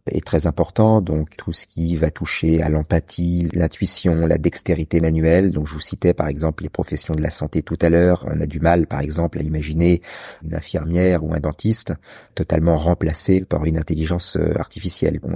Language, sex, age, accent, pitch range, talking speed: French, male, 40-59, French, 80-90 Hz, 190 wpm